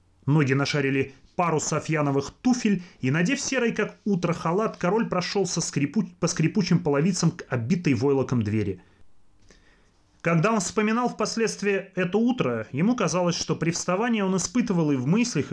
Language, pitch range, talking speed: Russian, 130-185 Hz, 145 wpm